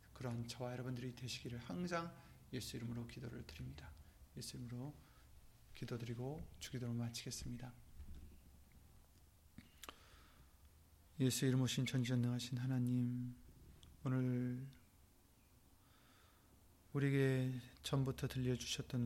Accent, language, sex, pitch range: native, Korean, male, 95-135 Hz